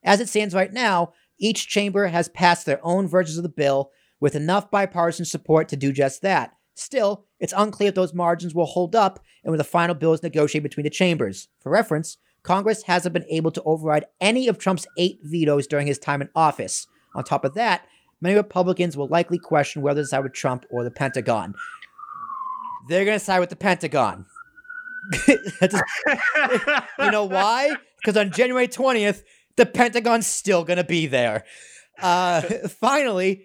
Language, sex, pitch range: English, male, 155-205 Hz